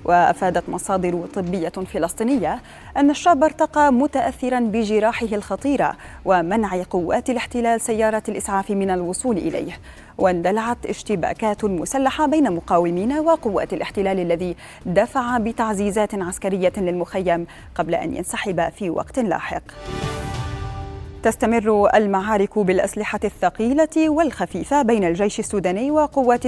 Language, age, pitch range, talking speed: Arabic, 20-39, 185-245 Hz, 100 wpm